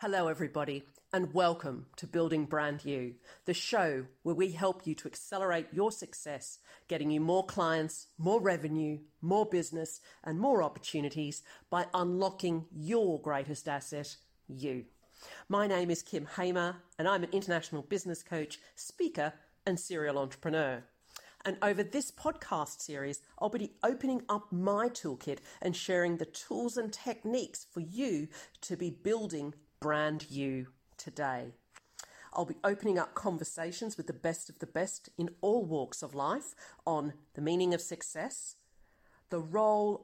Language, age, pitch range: English, 40-59, 150-195 Hz